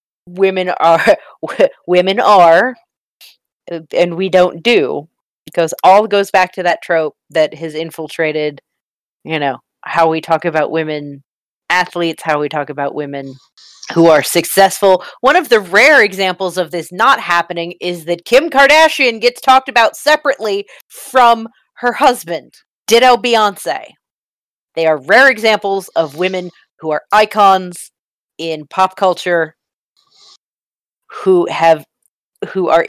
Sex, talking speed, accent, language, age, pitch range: female, 135 wpm, American, English, 30-49, 150-200 Hz